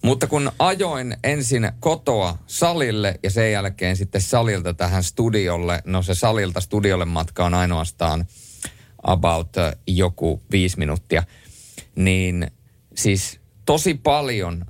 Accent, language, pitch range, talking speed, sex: native, Finnish, 90-115 Hz, 115 wpm, male